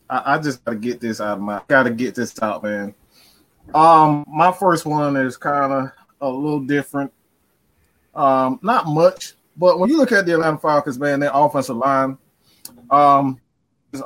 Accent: American